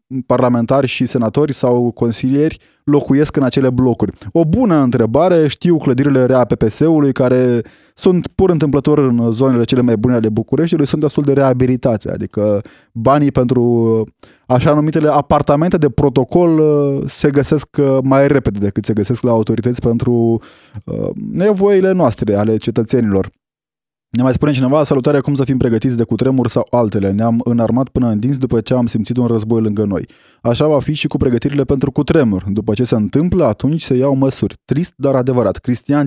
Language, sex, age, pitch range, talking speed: Romanian, male, 20-39, 120-150 Hz, 165 wpm